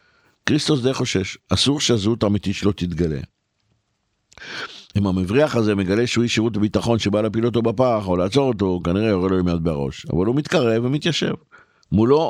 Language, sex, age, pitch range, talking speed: Hebrew, male, 50-69, 100-125 Hz, 160 wpm